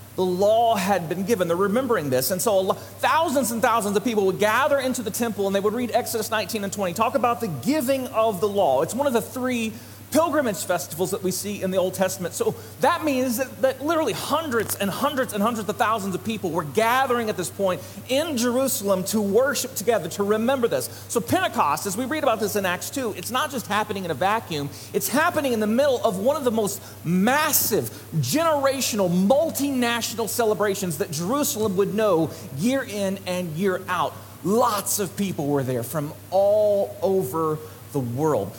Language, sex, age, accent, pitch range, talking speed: English, male, 40-59, American, 155-240 Hz, 200 wpm